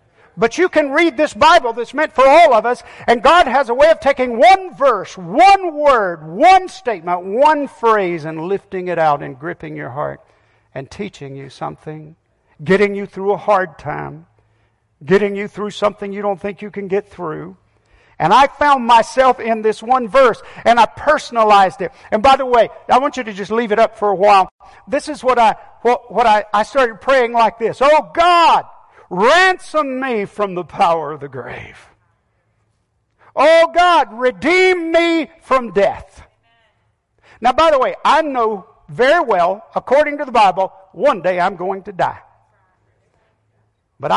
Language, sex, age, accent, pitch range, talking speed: English, male, 50-69, American, 165-275 Hz, 175 wpm